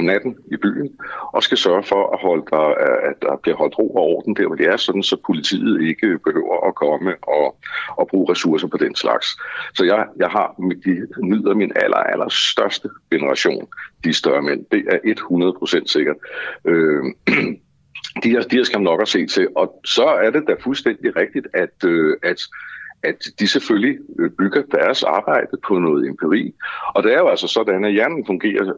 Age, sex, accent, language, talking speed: 60-79, male, native, Danish, 180 wpm